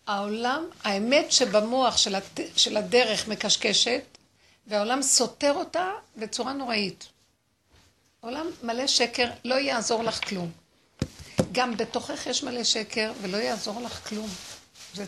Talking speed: 110 wpm